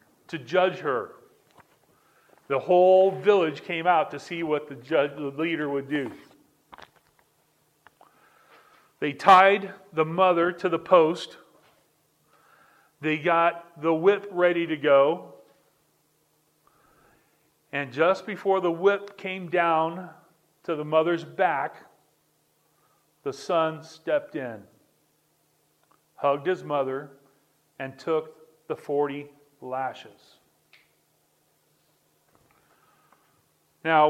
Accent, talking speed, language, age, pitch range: American, 95 wpm, English, 40-59, 140-175 Hz